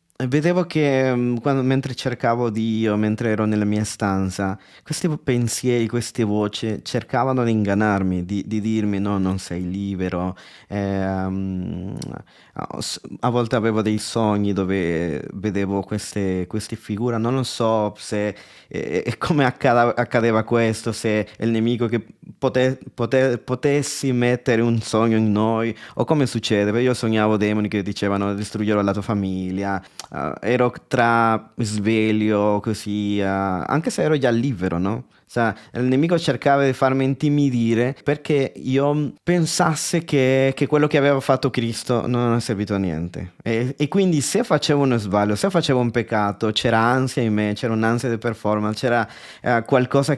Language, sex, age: Italian, male, 20-39